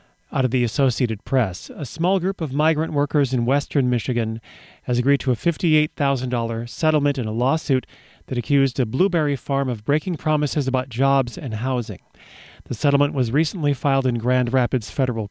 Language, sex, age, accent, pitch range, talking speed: English, male, 40-59, American, 125-150 Hz, 185 wpm